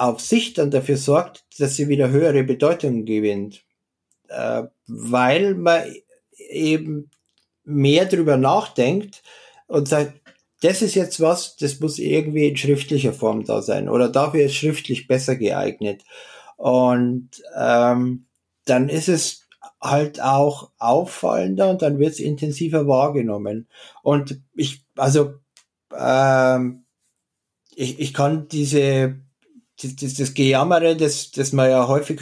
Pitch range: 130-150 Hz